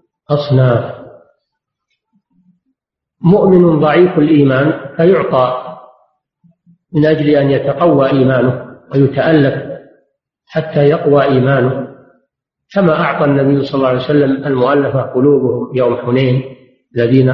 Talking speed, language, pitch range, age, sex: 85 wpm, Arabic, 130-165 Hz, 50-69, male